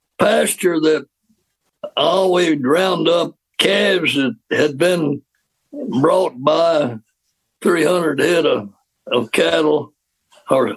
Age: 60-79